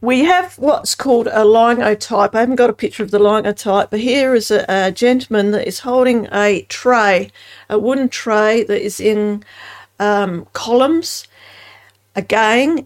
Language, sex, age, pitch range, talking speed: English, female, 50-69, 195-240 Hz, 170 wpm